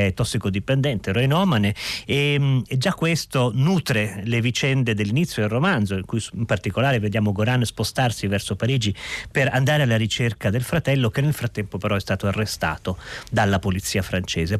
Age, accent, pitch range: 40-59, native, 110-145 Hz